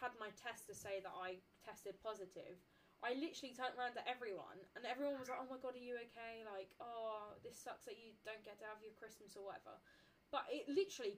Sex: female